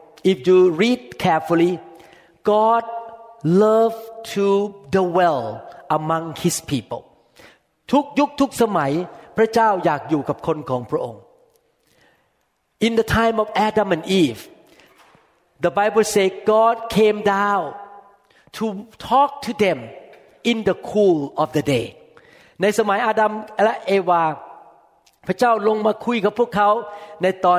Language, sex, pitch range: Thai, male, 175-235 Hz